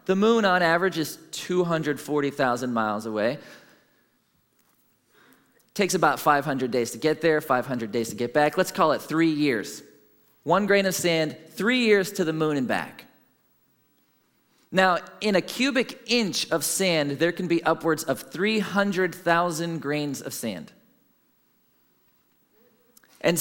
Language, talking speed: English, 135 wpm